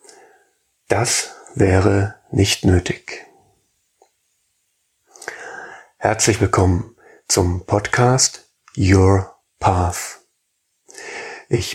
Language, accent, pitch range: German, German, 95-120 Hz